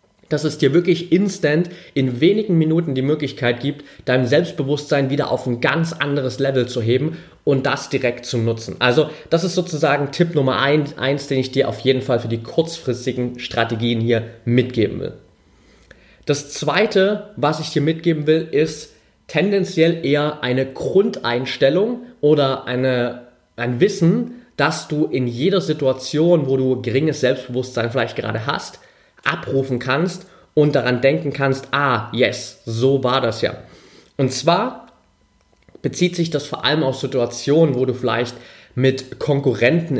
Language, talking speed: German, 150 wpm